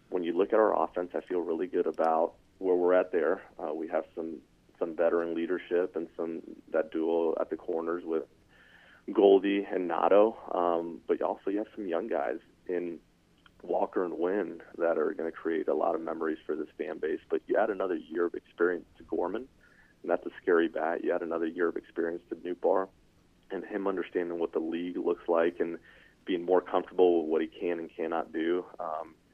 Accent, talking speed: American, 205 wpm